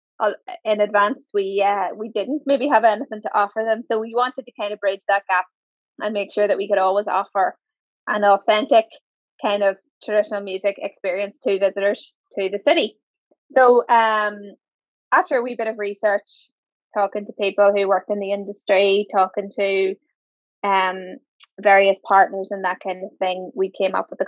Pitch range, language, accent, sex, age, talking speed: 195-220 Hz, English, Irish, female, 10-29, 180 wpm